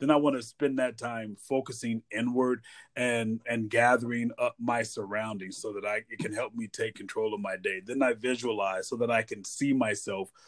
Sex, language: male, English